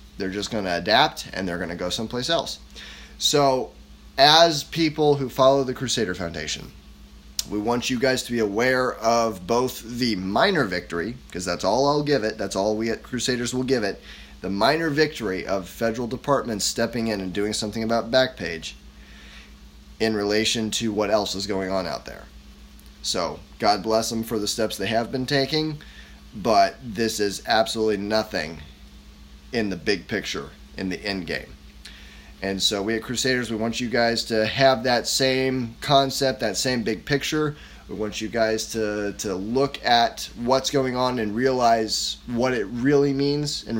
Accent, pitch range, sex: American, 95-130 Hz, male